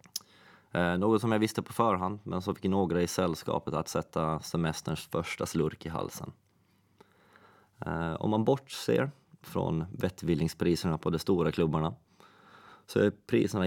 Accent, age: native, 20-39